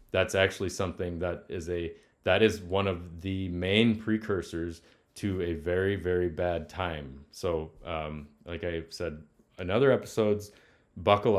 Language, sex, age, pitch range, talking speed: English, male, 30-49, 85-105 Hz, 150 wpm